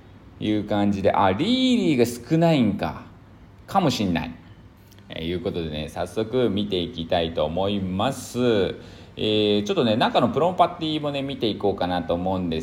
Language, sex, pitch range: Japanese, male, 90-130 Hz